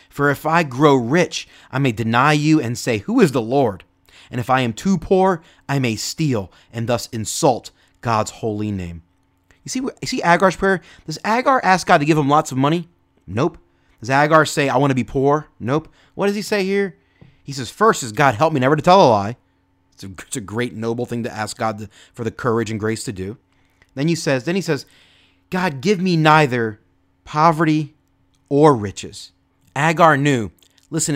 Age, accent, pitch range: 30-49, American, 120-190 Hz